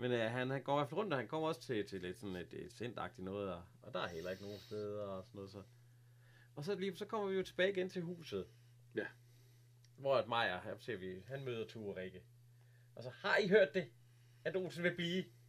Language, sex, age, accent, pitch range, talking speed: Danish, male, 30-49, native, 105-130 Hz, 255 wpm